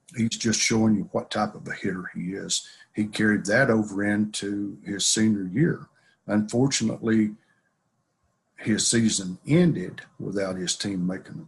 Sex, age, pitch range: male, 50-69, 95-115 Hz